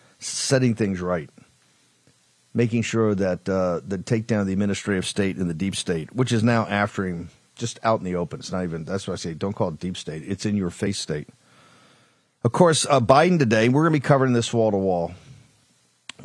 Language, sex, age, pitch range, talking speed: English, male, 50-69, 95-125 Hz, 220 wpm